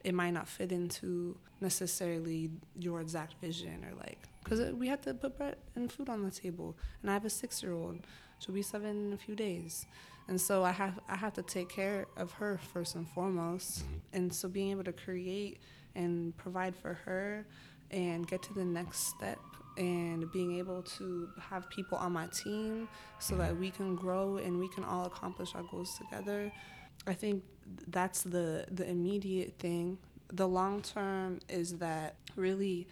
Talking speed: 180 wpm